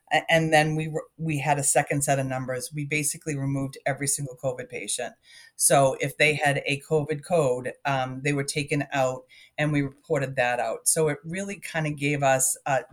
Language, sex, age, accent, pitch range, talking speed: English, female, 40-59, American, 135-155 Hz, 200 wpm